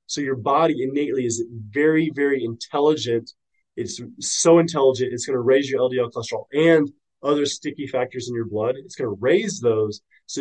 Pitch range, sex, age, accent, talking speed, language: 110-140 Hz, male, 20-39, American, 180 wpm, English